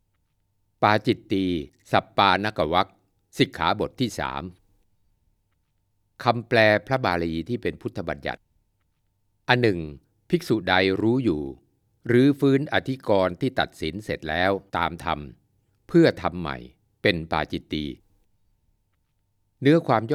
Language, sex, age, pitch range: Thai, male, 60-79, 85-115 Hz